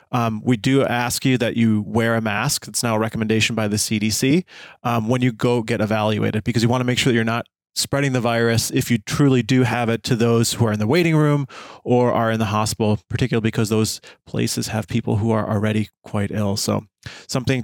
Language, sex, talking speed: English, male, 230 wpm